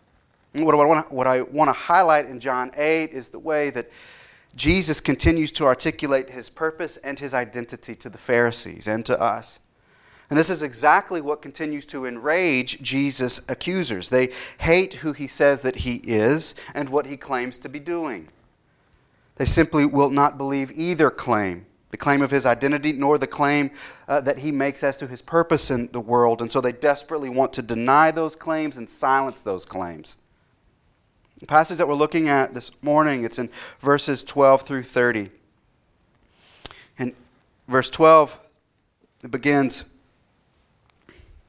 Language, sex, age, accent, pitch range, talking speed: English, male, 30-49, American, 120-150 Hz, 160 wpm